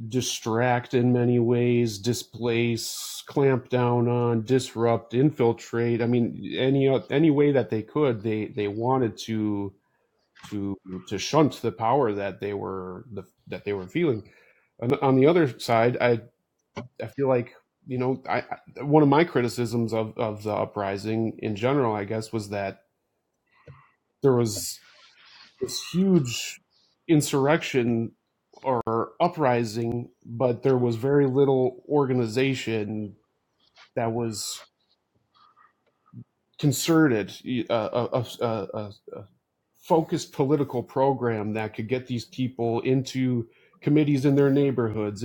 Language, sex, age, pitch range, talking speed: English, male, 40-59, 110-130 Hz, 125 wpm